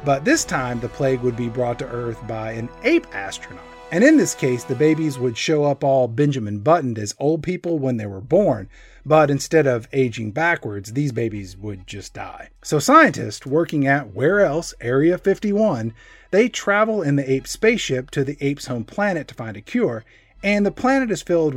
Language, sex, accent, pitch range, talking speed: English, male, American, 120-170 Hz, 200 wpm